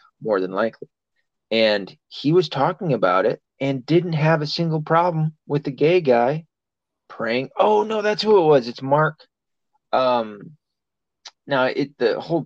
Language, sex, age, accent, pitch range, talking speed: English, male, 30-49, American, 120-175 Hz, 160 wpm